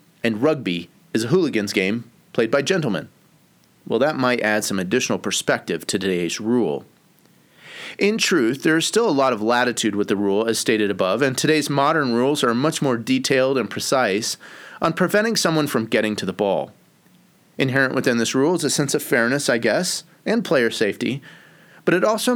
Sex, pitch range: male, 120-170 Hz